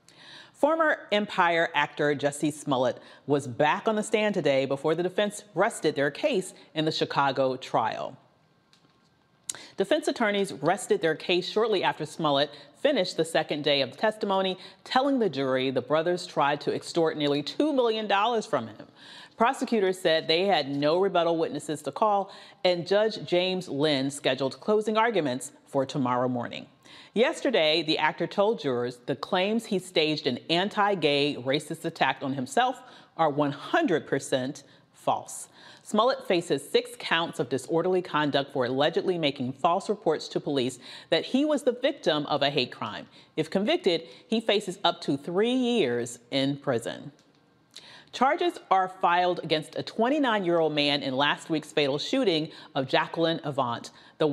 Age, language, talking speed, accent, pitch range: 40-59, English, 150 wpm, American, 145-205 Hz